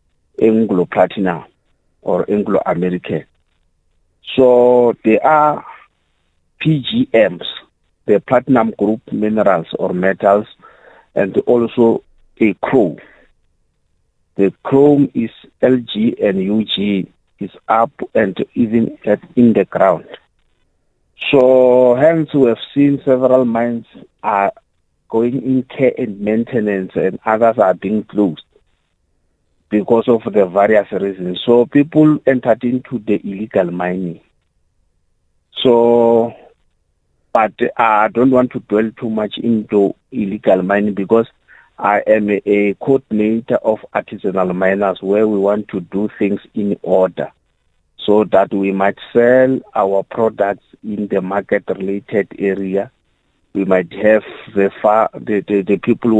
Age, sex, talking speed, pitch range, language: 50-69, male, 115 wpm, 95-120 Hz, English